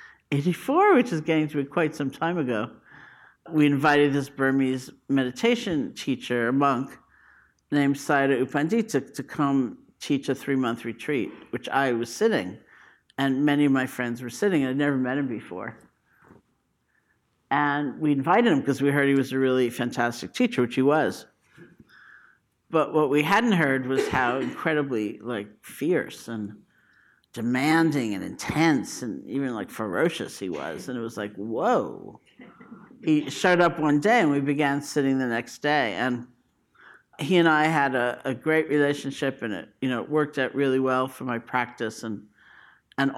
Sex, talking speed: male, 170 wpm